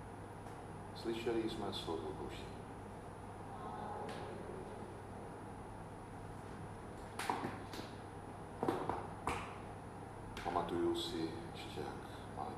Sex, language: male, Slovak